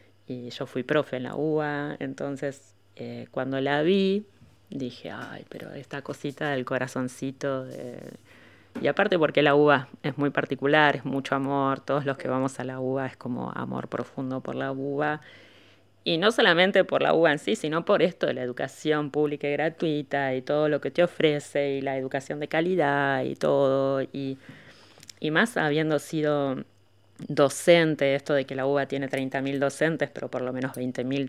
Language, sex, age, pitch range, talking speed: Spanish, female, 20-39, 125-150 Hz, 175 wpm